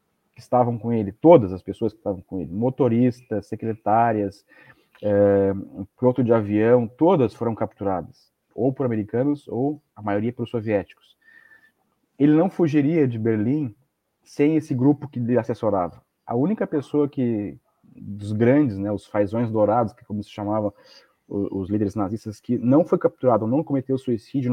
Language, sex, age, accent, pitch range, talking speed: Portuguese, male, 30-49, Brazilian, 105-145 Hz, 155 wpm